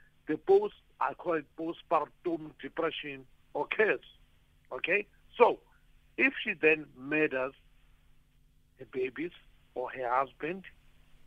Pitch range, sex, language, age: 135-195 Hz, male, English, 60-79